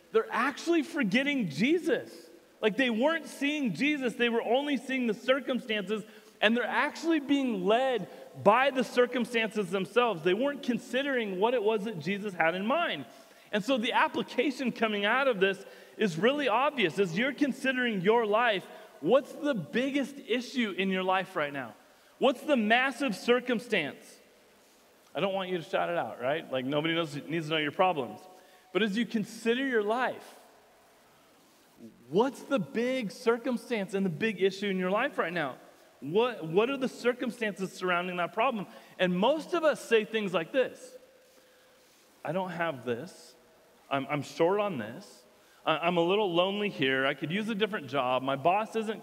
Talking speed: 170 wpm